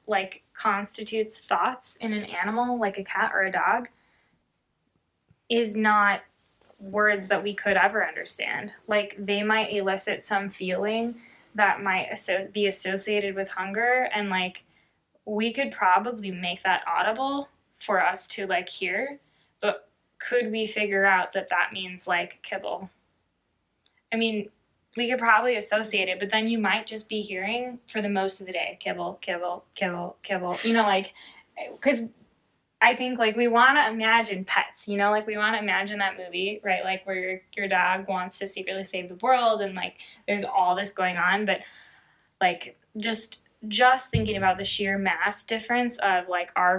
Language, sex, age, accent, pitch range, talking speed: English, female, 10-29, American, 185-220 Hz, 170 wpm